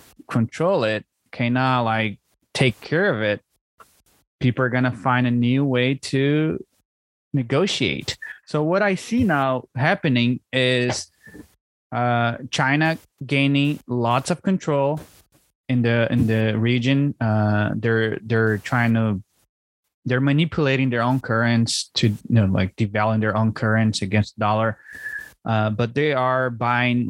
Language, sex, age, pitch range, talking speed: English, male, 20-39, 115-140 Hz, 135 wpm